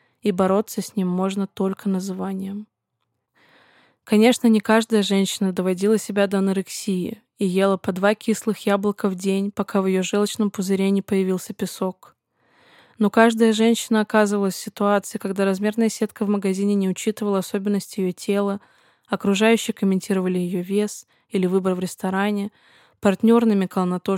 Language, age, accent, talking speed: Russian, 20-39, native, 145 wpm